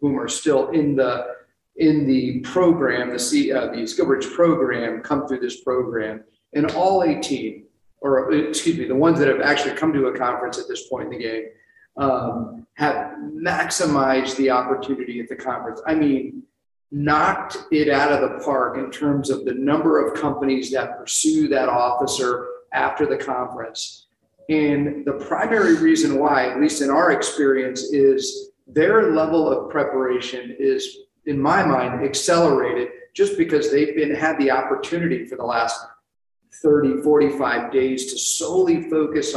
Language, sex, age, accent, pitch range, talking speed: English, male, 40-59, American, 130-170 Hz, 160 wpm